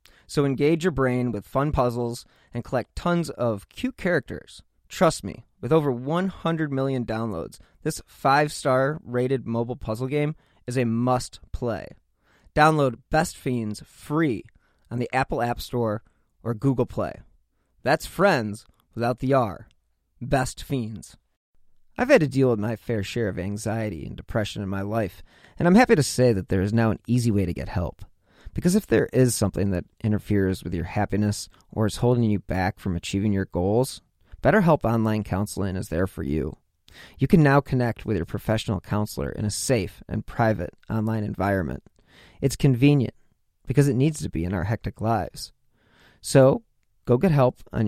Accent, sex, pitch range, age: American, male, 100-135 Hz, 30-49